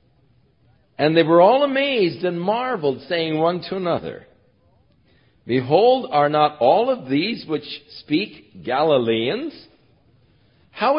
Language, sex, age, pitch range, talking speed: English, male, 50-69, 120-180 Hz, 115 wpm